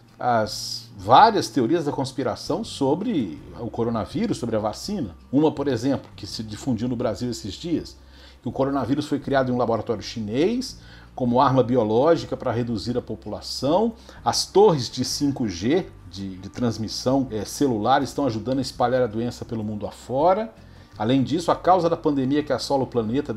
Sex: male